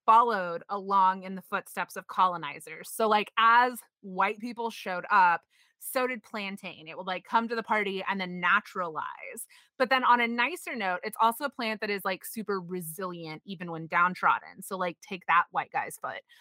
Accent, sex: American, female